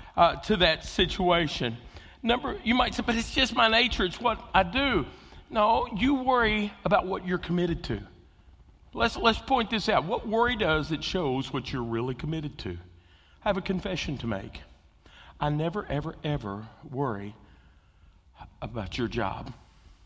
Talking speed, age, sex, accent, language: 160 wpm, 50-69, male, American, English